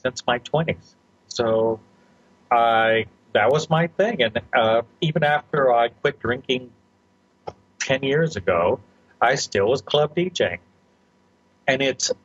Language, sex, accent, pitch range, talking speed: English, male, American, 110-155 Hz, 125 wpm